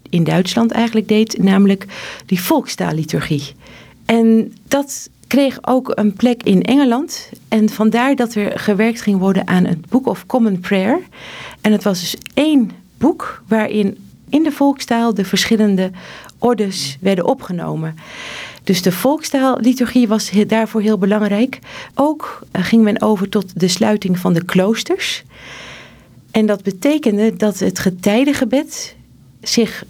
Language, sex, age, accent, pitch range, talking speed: Dutch, female, 50-69, Dutch, 190-250 Hz, 135 wpm